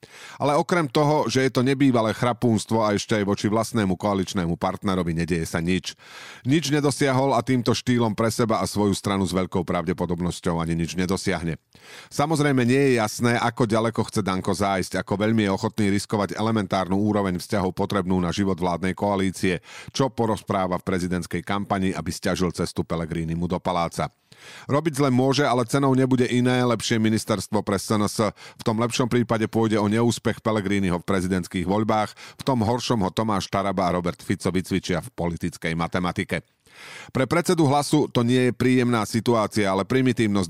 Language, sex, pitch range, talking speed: Slovak, male, 95-120 Hz, 165 wpm